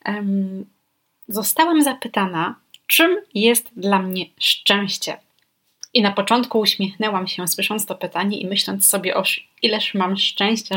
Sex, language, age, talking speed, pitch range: female, Polish, 20-39, 125 wpm, 180-215 Hz